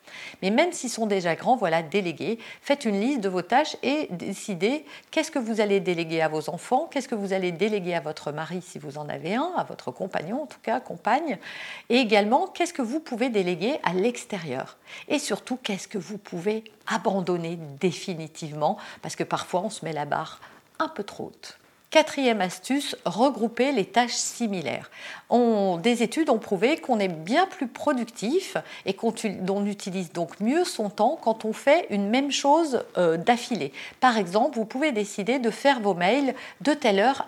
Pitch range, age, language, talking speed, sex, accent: 195-265 Hz, 50-69, French, 190 wpm, female, French